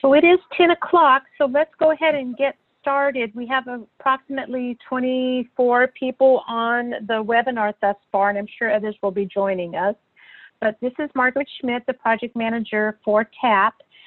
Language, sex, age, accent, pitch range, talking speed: English, female, 50-69, American, 190-240 Hz, 170 wpm